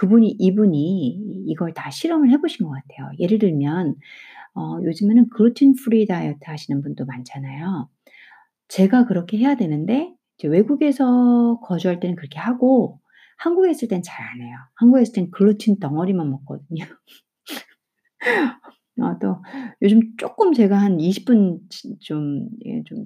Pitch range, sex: 150-230 Hz, female